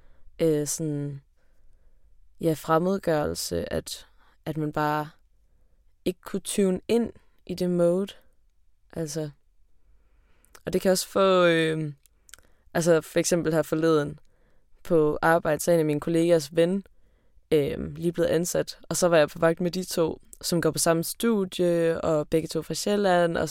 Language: Danish